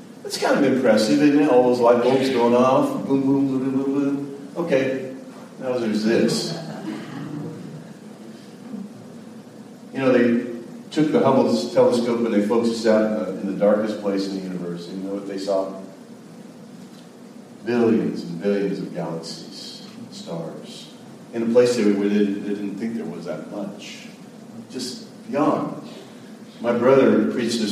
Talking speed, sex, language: 155 wpm, male, English